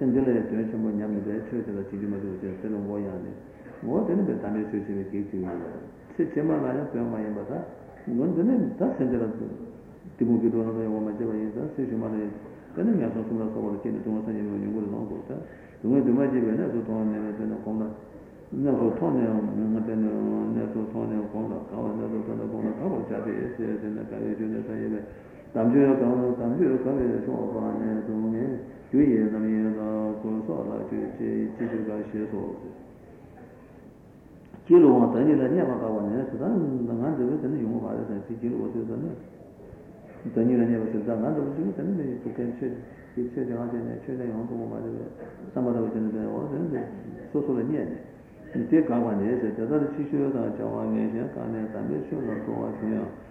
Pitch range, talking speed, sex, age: 105-120 Hz, 100 wpm, male, 60-79